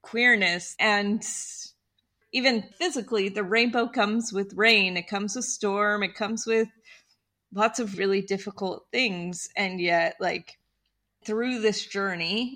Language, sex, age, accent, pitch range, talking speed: English, female, 30-49, American, 185-225 Hz, 130 wpm